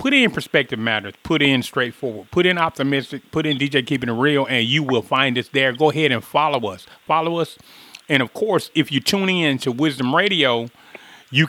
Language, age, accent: English, 30-49, American